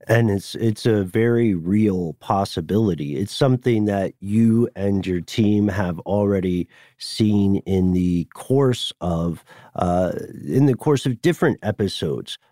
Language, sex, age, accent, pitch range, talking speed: English, male, 40-59, American, 95-125 Hz, 135 wpm